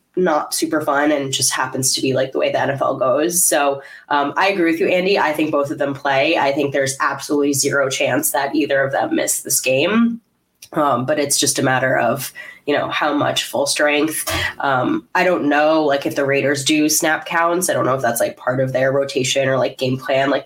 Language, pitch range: English, 140-205 Hz